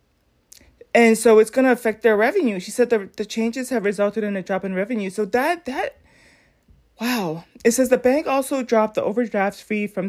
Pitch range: 190-230 Hz